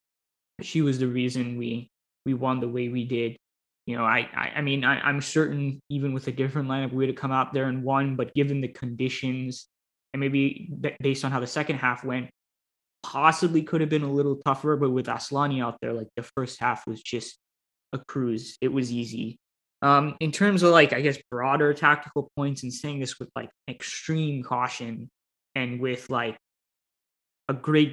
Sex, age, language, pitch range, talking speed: male, 20-39, English, 120-140 Hz, 200 wpm